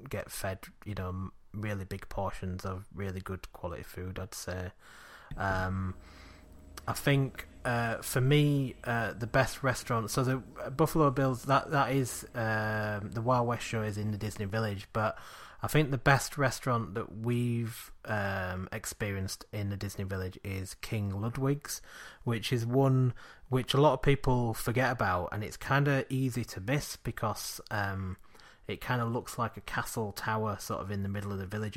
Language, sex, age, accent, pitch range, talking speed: English, male, 30-49, British, 95-125 Hz, 180 wpm